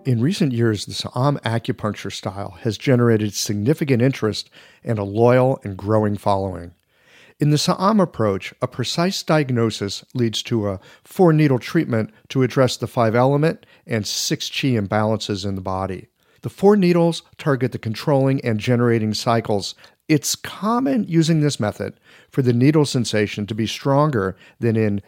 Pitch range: 105-150 Hz